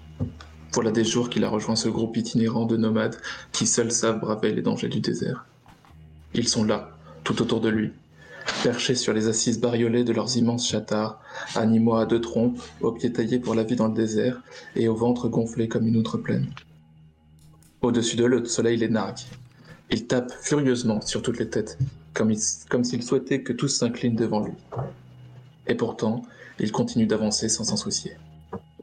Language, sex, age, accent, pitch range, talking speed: French, male, 20-39, French, 105-120 Hz, 185 wpm